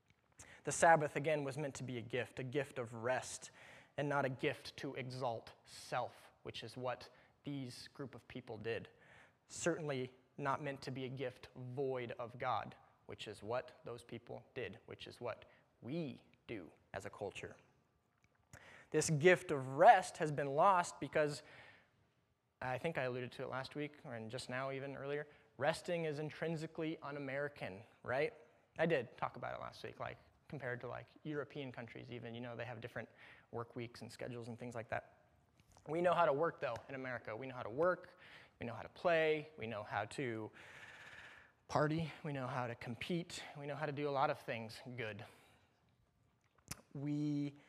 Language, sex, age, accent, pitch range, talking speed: English, male, 20-39, American, 120-150 Hz, 180 wpm